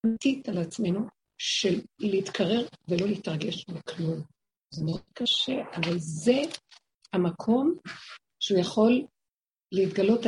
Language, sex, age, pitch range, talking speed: Hebrew, female, 60-79, 195-260 Hz, 95 wpm